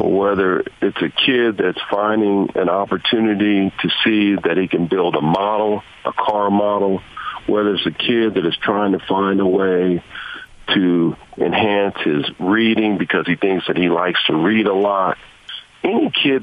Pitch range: 95-110 Hz